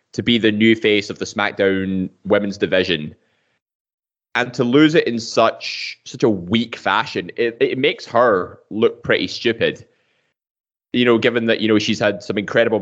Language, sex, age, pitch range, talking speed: English, male, 20-39, 100-125 Hz, 175 wpm